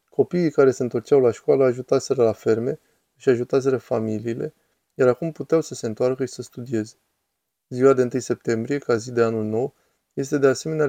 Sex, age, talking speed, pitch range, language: male, 20-39, 180 wpm, 120-140 Hz, Romanian